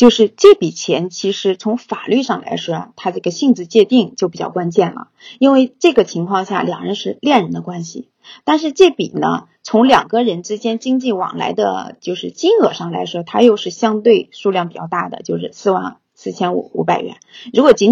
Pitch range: 185-250 Hz